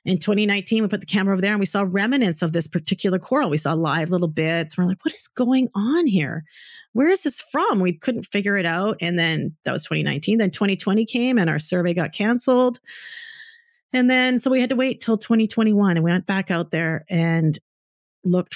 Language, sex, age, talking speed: English, female, 30-49, 215 wpm